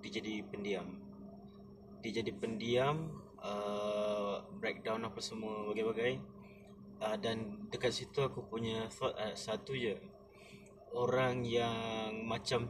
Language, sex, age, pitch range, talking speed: Malay, male, 20-39, 95-115 Hz, 115 wpm